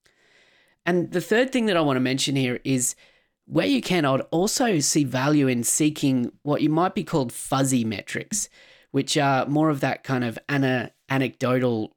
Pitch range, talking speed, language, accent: 120-155 Hz, 175 wpm, English, Australian